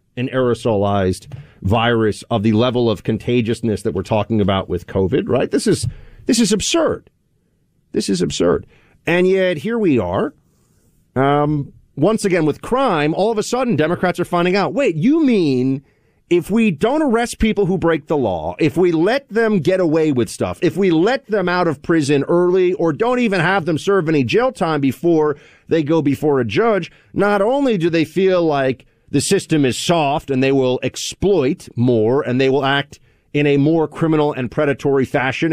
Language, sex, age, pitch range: English, male, 40-59, 125-175 Hz